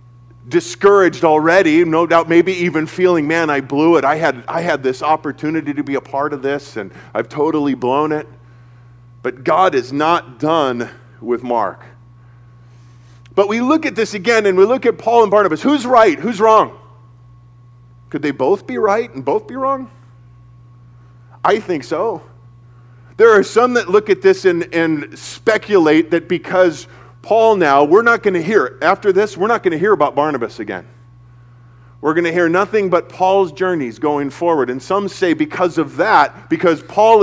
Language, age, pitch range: English, 40-59, 120-190 Hz